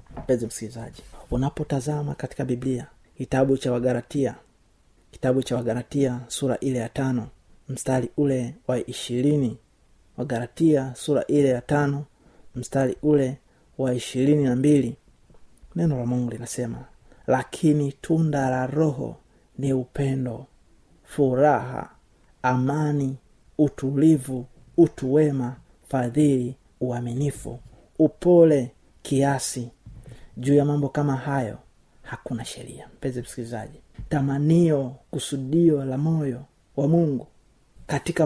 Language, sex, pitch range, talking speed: Swahili, male, 130-150 Hz, 95 wpm